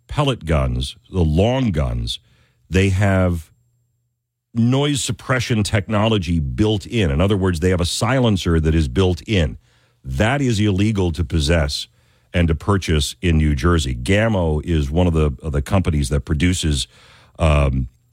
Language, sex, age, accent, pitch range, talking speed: English, male, 50-69, American, 80-120 Hz, 145 wpm